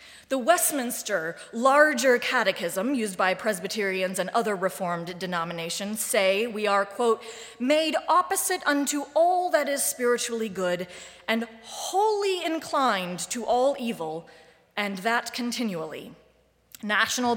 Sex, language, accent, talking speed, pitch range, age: female, English, American, 115 wpm, 200-300 Hz, 30-49